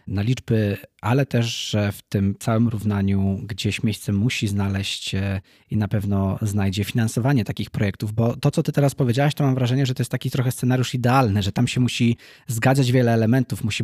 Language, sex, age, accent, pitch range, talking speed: Polish, male, 20-39, native, 115-140 Hz, 180 wpm